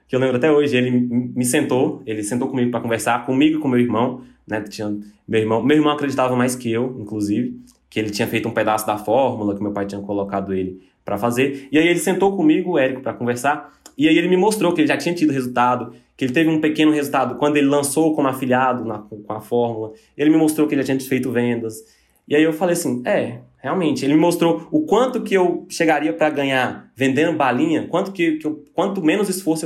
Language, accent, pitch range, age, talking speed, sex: Portuguese, Brazilian, 110-155 Hz, 20-39, 230 wpm, male